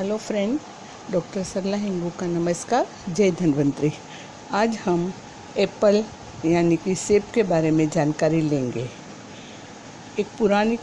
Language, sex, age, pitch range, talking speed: Hindi, female, 50-69, 165-205 Hz, 120 wpm